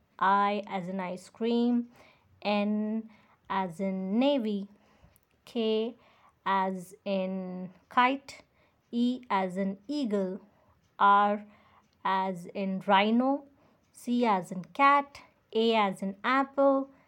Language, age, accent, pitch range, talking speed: Hindi, 20-39, native, 200-235 Hz, 105 wpm